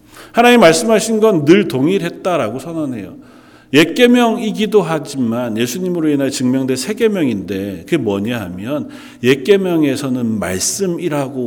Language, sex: Korean, male